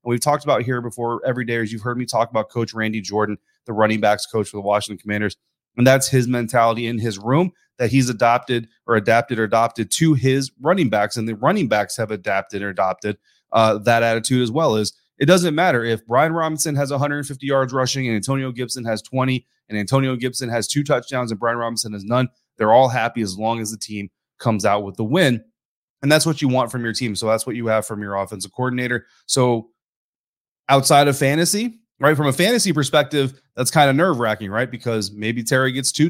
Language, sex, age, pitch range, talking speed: English, male, 30-49, 110-130 Hz, 220 wpm